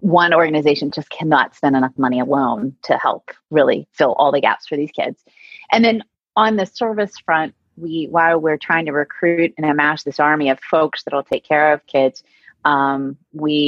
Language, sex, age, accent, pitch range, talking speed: English, female, 30-49, American, 140-165 Hz, 190 wpm